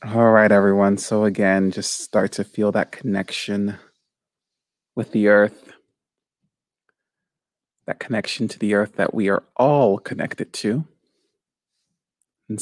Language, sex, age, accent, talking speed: English, male, 30-49, American, 125 wpm